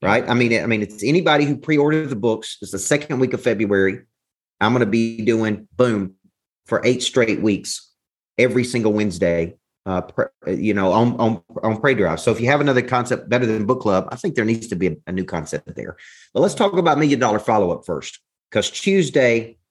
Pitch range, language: 105-130 Hz, English